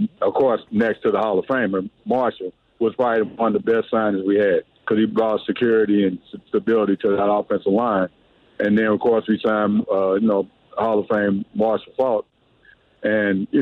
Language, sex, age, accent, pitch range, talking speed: English, male, 50-69, American, 105-120 Hz, 195 wpm